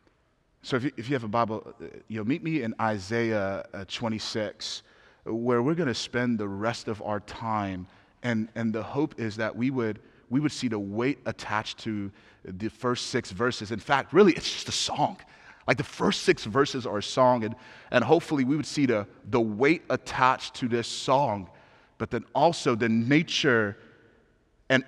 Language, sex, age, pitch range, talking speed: English, male, 30-49, 95-115 Hz, 180 wpm